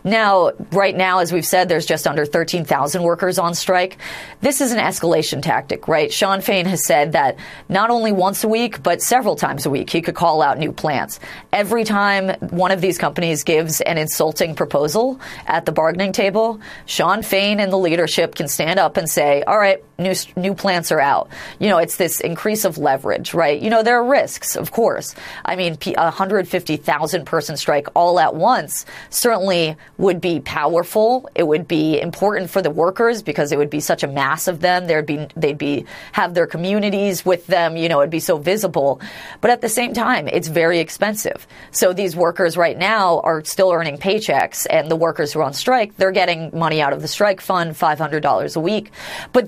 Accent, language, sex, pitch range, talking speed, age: American, English, female, 160-200 Hz, 200 wpm, 30-49